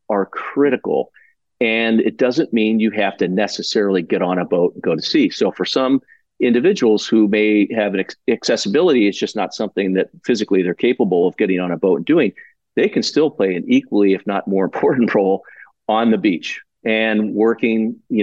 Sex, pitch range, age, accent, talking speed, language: male, 95-115 Hz, 40-59, American, 200 wpm, English